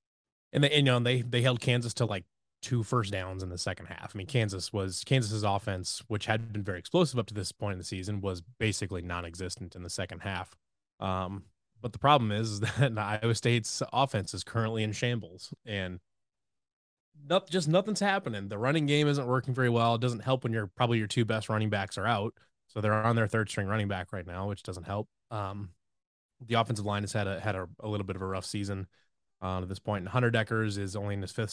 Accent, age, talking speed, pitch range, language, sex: American, 20-39, 235 wpm, 95-120 Hz, English, male